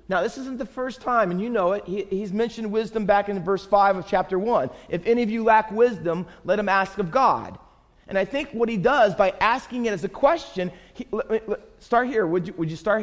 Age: 40-59